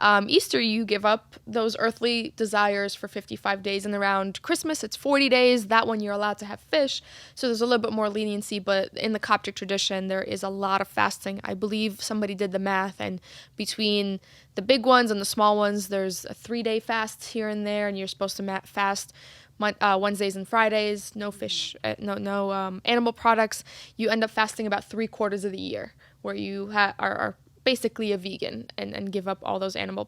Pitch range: 195-220 Hz